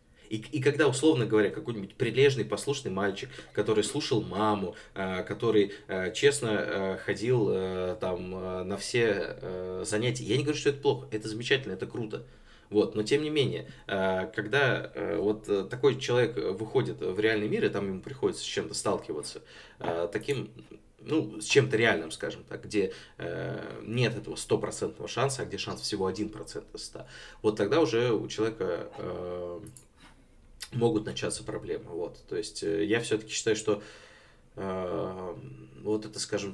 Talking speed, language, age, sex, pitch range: 160 wpm, Russian, 20-39, male, 95-140 Hz